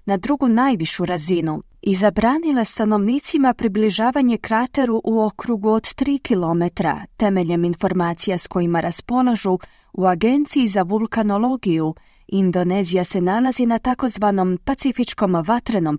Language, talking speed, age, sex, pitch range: Croatian, 115 wpm, 30-49, female, 180-245 Hz